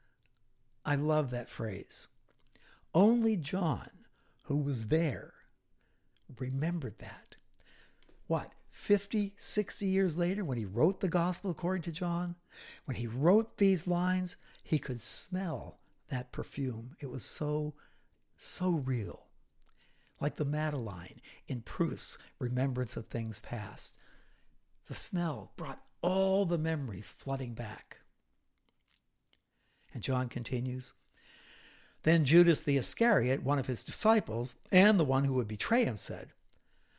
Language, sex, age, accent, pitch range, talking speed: English, male, 60-79, American, 125-180 Hz, 120 wpm